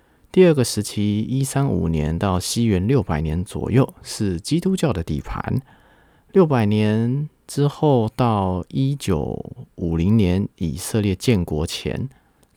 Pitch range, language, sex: 95-125 Hz, Chinese, male